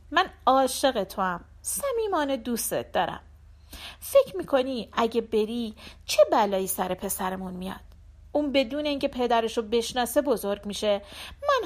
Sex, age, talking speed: female, 40-59, 130 wpm